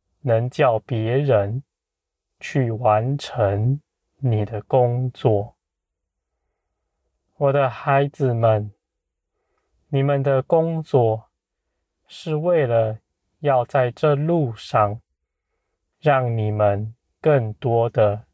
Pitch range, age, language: 100-140 Hz, 20-39, Chinese